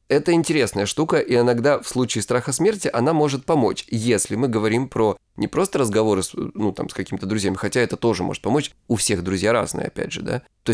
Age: 20-39